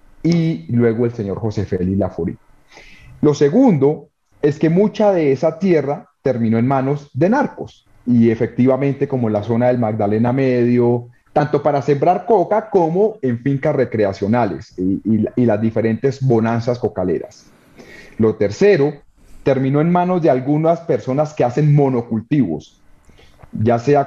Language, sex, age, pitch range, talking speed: Spanish, male, 30-49, 110-140 Hz, 140 wpm